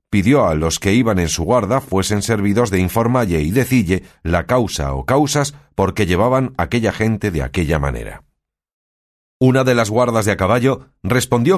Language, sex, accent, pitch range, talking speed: Spanish, male, Spanish, 95-140 Hz, 180 wpm